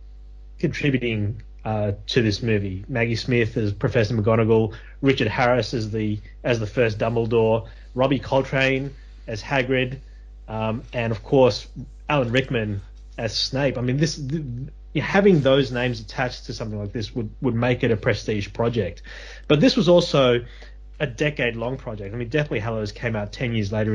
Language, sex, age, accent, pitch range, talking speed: English, male, 30-49, Australian, 110-135 Hz, 165 wpm